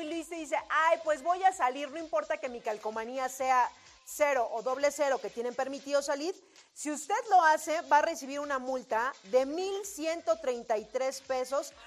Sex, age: female, 40-59